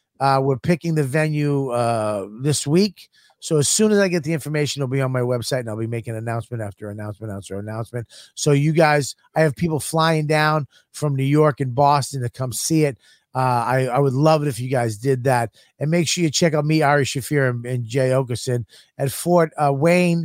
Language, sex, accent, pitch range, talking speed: English, male, American, 135-170 Hz, 220 wpm